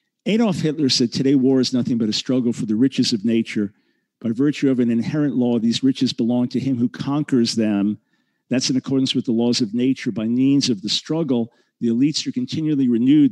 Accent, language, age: American, English, 50-69